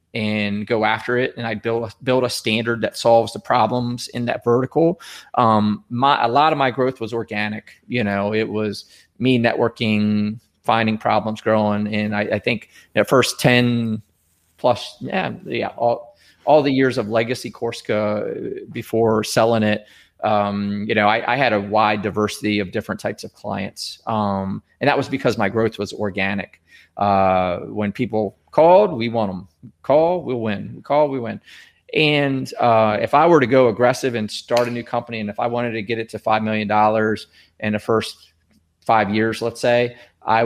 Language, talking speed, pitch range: English, 180 wpm, 105-120 Hz